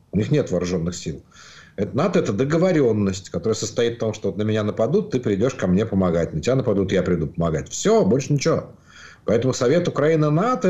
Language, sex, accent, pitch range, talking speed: Ukrainian, male, native, 95-135 Hz, 185 wpm